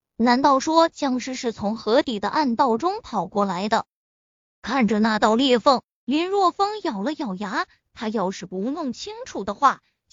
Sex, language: female, Chinese